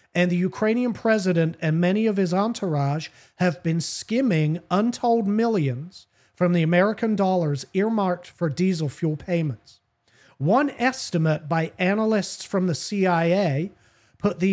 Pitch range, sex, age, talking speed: 145-190 Hz, male, 40-59, 130 wpm